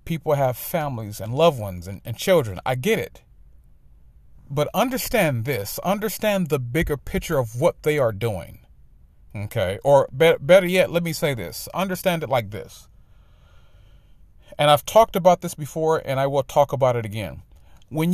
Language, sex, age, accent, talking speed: English, male, 40-59, American, 165 wpm